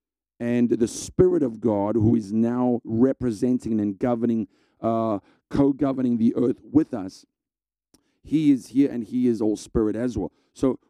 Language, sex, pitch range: English, male, 115-135 Hz